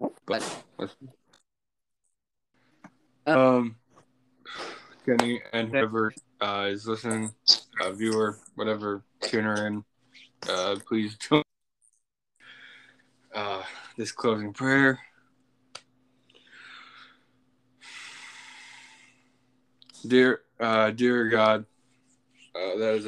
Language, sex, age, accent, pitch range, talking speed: English, male, 20-39, American, 105-125 Hz, 70 wpm